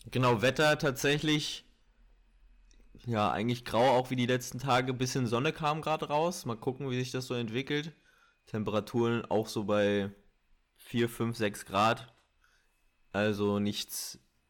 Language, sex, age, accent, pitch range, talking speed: German, male, 20-39, German, 105-125 Hz, 135 wpm